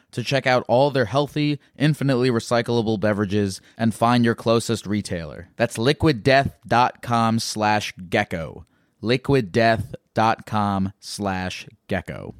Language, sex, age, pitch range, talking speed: English, male, 20-39, 105-130 Hz, 80 wpm